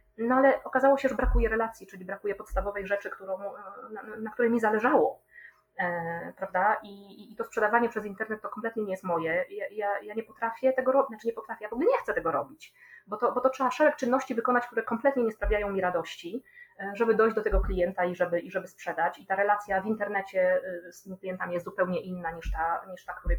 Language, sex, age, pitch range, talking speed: Polish, female, 20-39, 180-230 Hz, 230 wpm